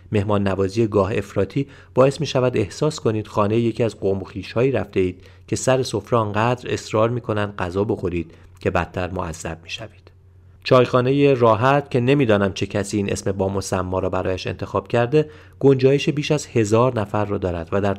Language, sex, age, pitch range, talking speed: Persian, male, 30-49, 95-115 Hz, 185 wpm